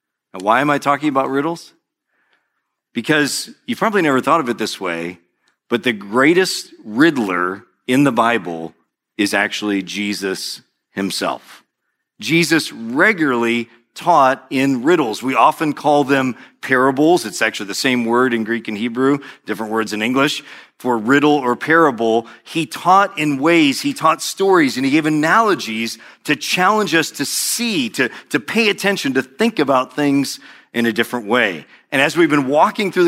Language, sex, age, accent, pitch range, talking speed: English, male, 40-59, American, 120-165 Hz, 160 wpm